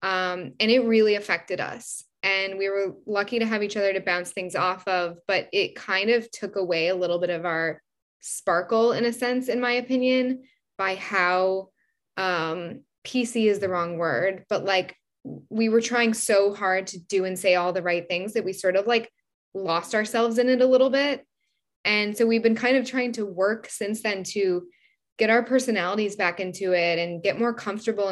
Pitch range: 180-220 Hz